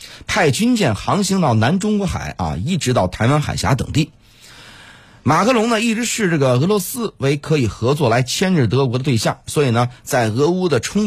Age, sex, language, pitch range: 30-49, male, Chinese, 105-160 Hz